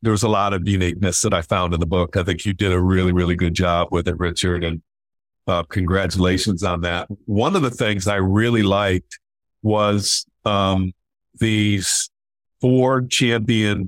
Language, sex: English, male